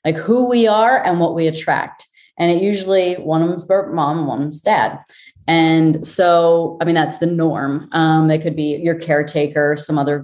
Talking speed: 200 wpm